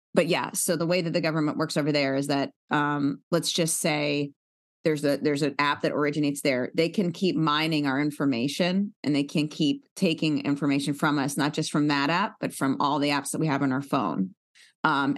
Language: English